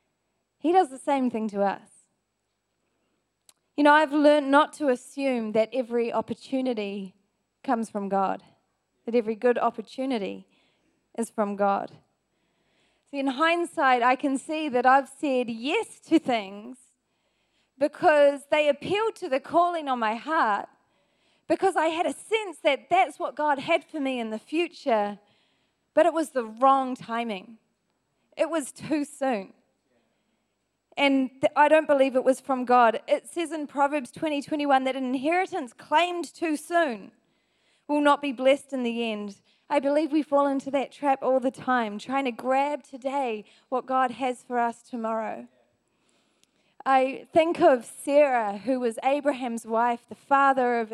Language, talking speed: English, 155 wpm